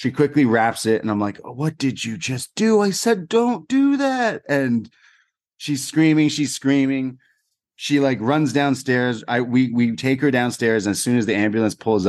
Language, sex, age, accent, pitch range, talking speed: English, male, 30-49, American, 100-140 Hz, 200 wpm